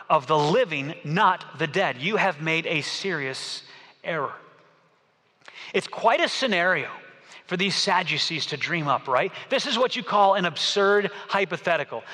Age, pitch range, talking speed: 30-49, 165-205 Hz, 155 wpm